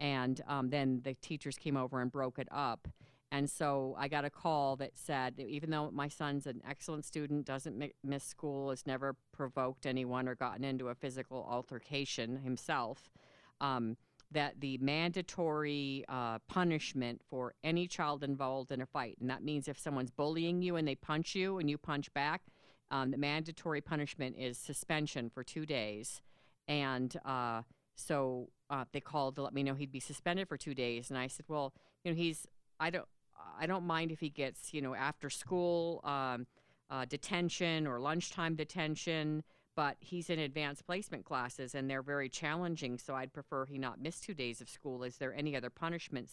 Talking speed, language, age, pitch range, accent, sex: 190 wpm, English, 50-69, 130-150 Hz, American, female